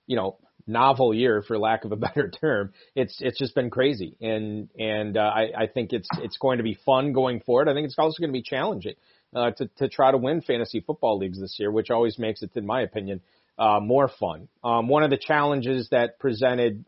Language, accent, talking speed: English, American, 230 wpm